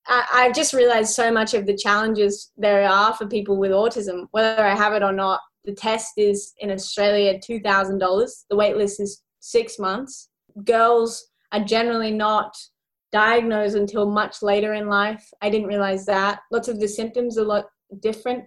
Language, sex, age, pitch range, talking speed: English, female, 20-39, 200-225 Hz, 175 wpm